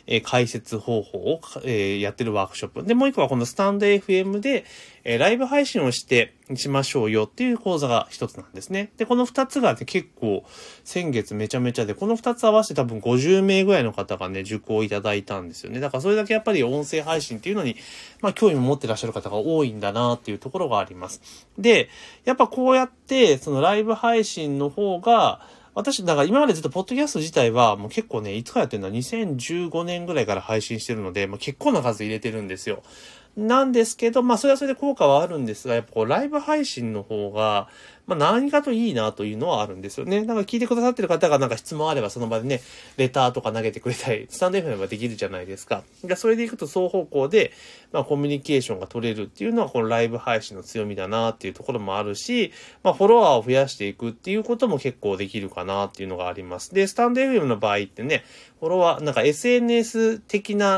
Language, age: Japanese, 30-49